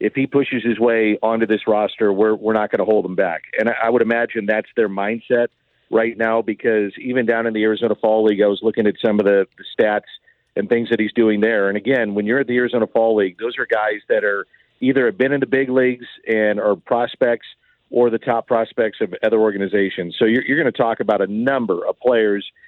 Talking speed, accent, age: 235 wpm, American, 50-69